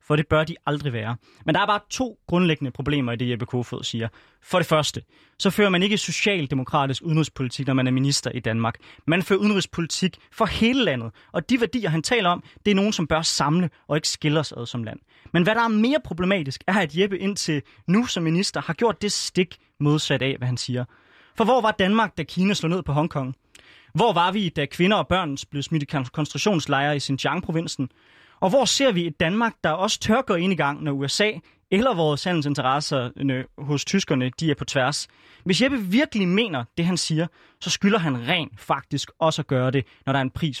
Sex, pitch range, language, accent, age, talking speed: male, 140-195 Hz, Danish, native, 20-39, 215 wpm